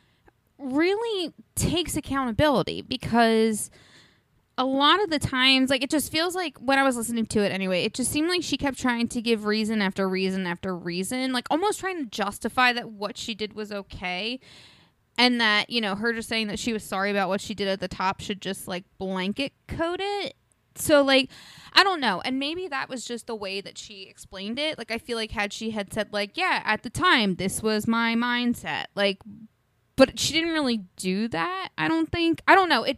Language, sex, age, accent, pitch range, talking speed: English, female, 20-39, American, 200-275 Hz, 215 wpm